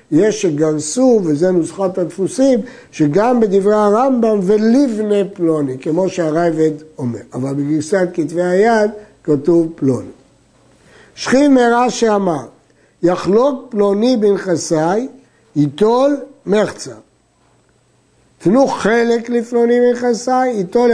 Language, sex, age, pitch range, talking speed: Hebrew, male, 60-79, 175-235 Hz, 90 wpm